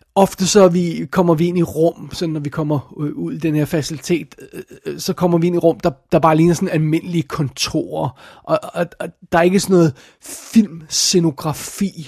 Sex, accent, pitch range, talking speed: male, native, 160-185 Hz, 200 wpm